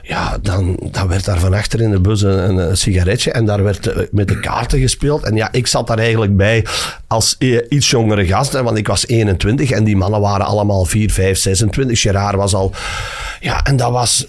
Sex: male